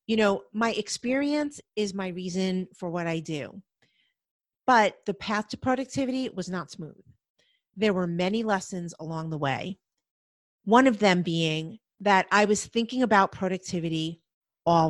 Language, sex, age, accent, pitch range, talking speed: English, female, 40-59, American, 180-230 Hz, 150 wpm